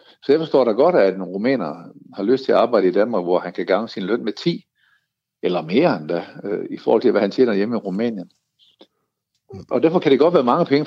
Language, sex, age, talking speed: Danish, male, 60-79, 235 wpm